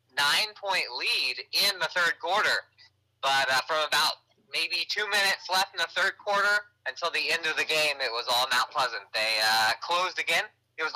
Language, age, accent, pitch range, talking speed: English, 20-39, American, 130-185 Hz, 195 wpm